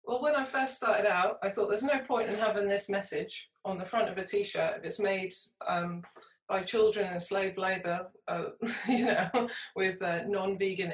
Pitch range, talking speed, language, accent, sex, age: 170-215 Hz, 195 wpm, English, British, female, 20-39